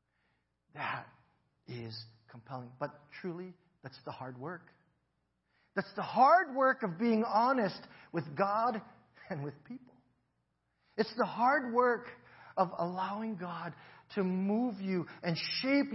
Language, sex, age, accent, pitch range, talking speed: English, male, 40-59, American, 120-185 Hz, 125 wpm